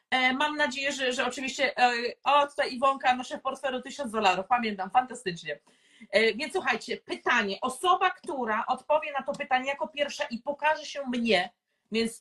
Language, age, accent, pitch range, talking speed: Polish, 40-59, native, 220-285 Hz, 160 wpm